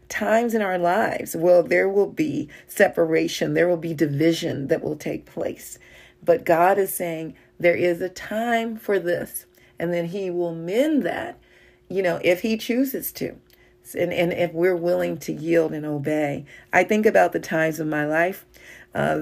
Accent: American